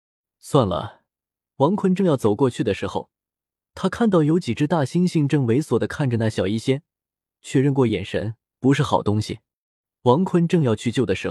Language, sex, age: Chinese, male, 20-39